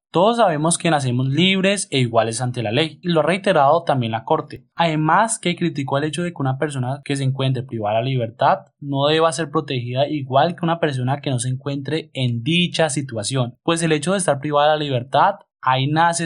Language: Spanish